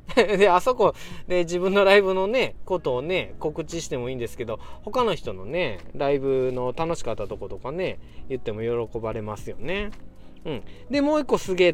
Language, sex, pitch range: Japanese, male, 115-185 Hz